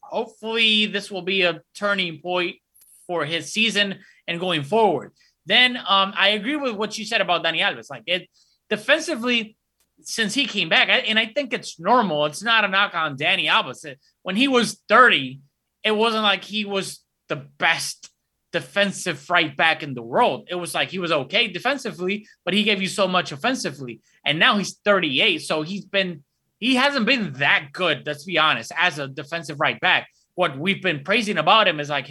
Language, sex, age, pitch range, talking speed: English, male, 20-39, 160-215 Hz, 190 wpm